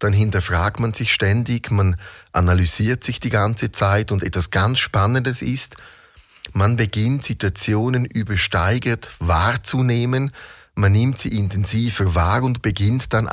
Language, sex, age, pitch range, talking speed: German, male, 30-49, 90-120 Hz, 130 wpm